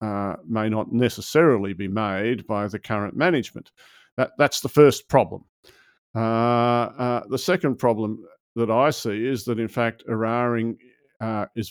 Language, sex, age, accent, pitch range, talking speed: English, male, 50-69, Australian, 105-120 Hz, 155 wpm